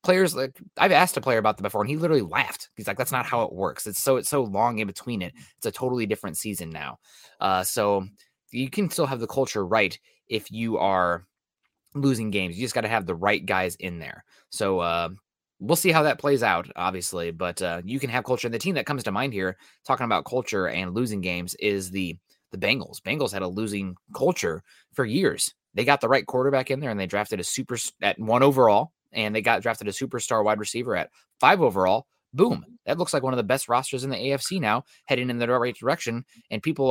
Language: English